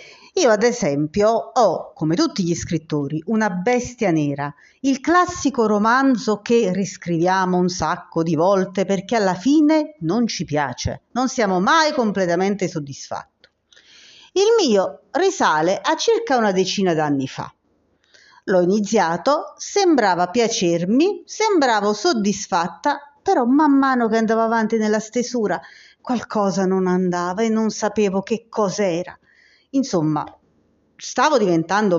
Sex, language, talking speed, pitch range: female, Italian, 120 wpm, 175-250 Hz